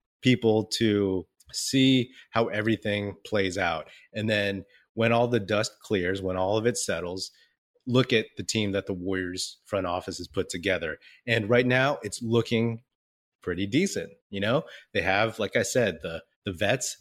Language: English